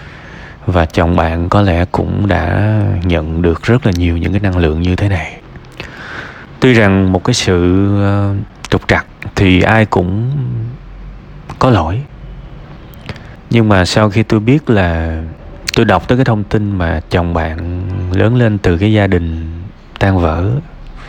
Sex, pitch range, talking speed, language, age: male, 85-105 Hz, 155 wpm, Vietnamese, 20-39